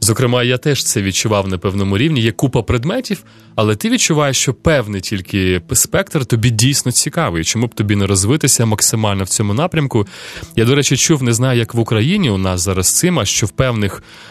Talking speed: 195 wpm